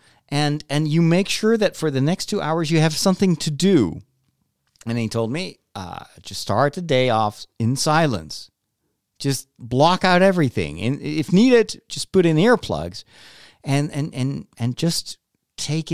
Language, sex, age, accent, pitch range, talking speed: English, male, 50-69, American, 115-185 Hz, 170 wpm